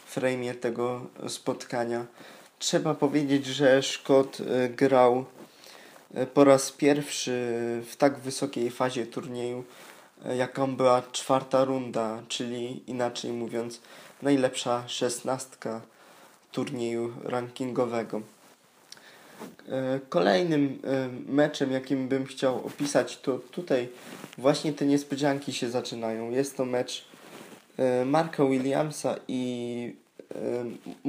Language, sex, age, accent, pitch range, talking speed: Polish, male, 20-39, native, 125-135 Hz, 90 wpm